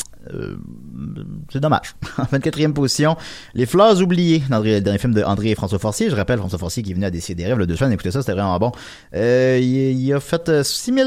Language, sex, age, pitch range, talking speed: French, male, 30-49, 105-140 Hz, 240 wpm